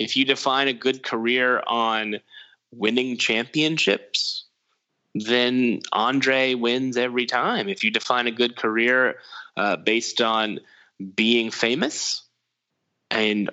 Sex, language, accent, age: male, English, American, 10-29